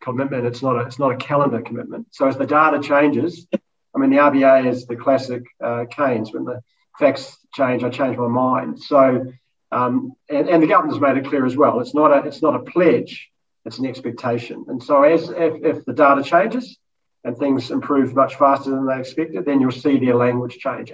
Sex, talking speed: male, 200 wpm